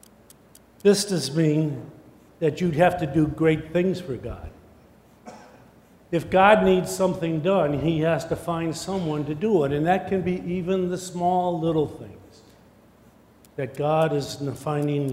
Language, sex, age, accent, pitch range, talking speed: English, male, 50-69, American, 140-180 Hz, 150 wpm